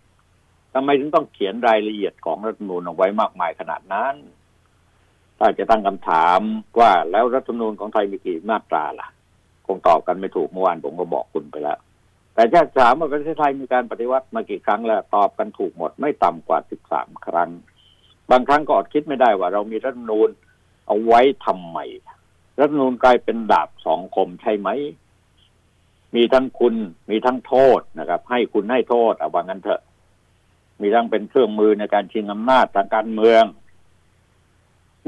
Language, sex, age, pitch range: Thai, male, 60-79, 95-120 Hz